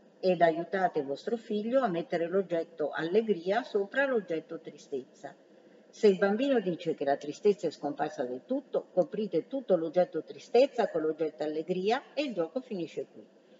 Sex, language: female, Italian